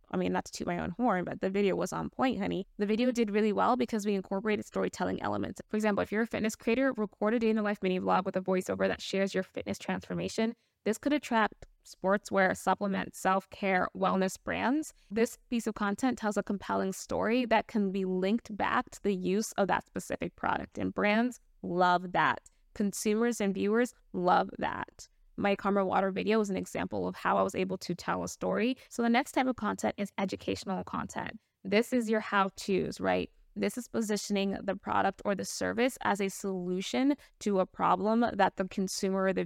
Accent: American